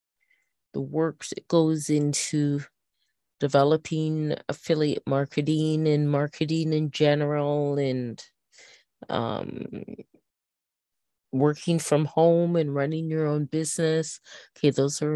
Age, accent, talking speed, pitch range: 30-49, American, 100 wpm, 135-170 Hz